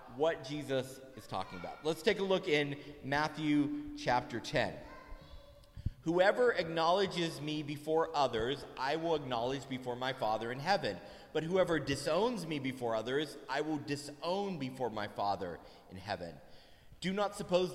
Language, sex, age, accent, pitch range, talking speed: English, male, 30-49, American, 130-180 Hz, 145 wpm